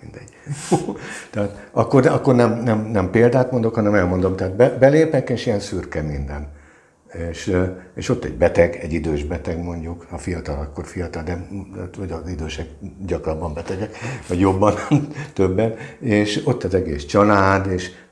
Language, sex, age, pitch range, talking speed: Hungarian, male, 60-79, 85-105 Hz, 150 wpm